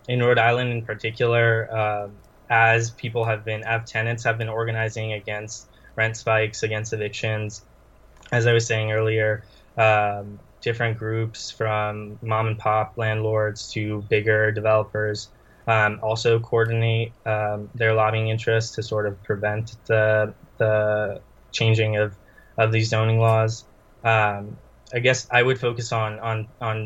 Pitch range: 105-115 Hz